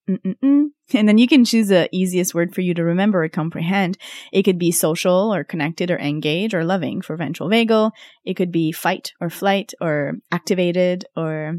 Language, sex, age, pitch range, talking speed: English, female, 20-39, 170-235 Hz, 185 wpm